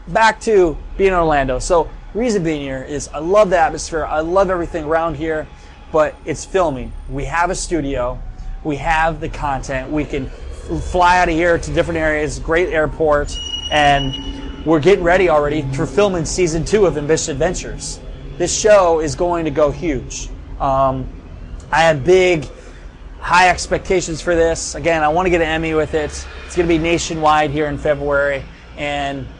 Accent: American